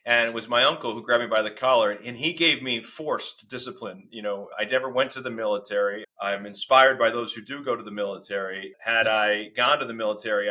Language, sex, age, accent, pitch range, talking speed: English, male, 40-59, American, 110-135 Hz, 235 wpm